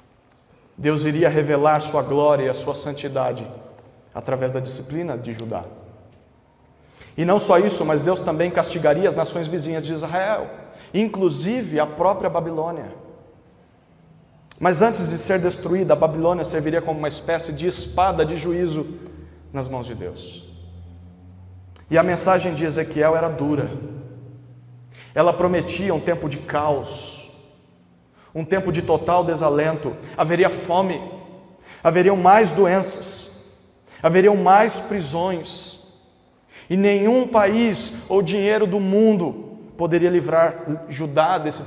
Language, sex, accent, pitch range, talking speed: Portuguese, male, Brazilian, 130-175 Hz, 125 wpm